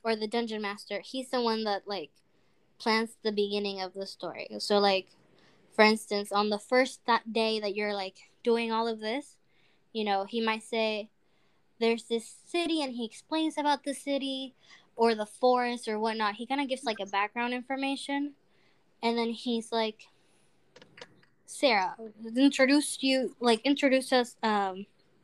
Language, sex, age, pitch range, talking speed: English, female, 10-29, 210-250 Hz, 160 wpm